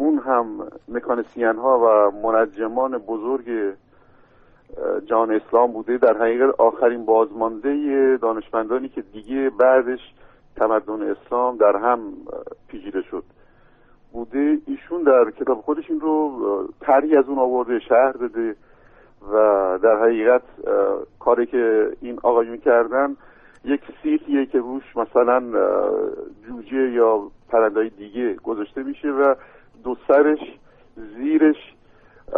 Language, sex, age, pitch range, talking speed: Persian, male, 50-69, 115-165 Hz, 110 wpm